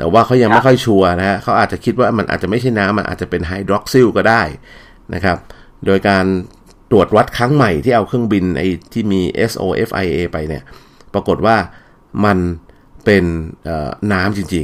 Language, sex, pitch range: Thai, male, 85-105 Hz